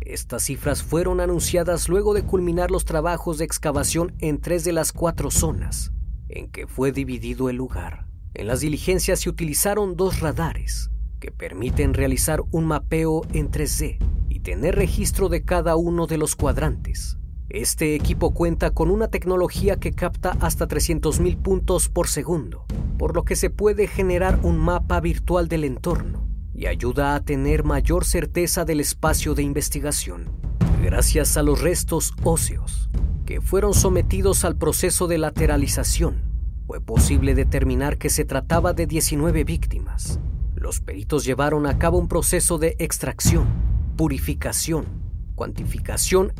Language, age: Spanish, 40-59